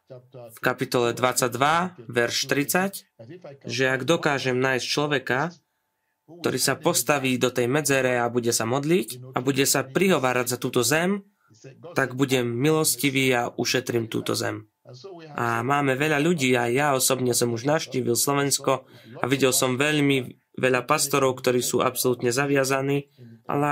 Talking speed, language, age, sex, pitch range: 140 wpm, Slovak, 20-39, male, 125-145 Hz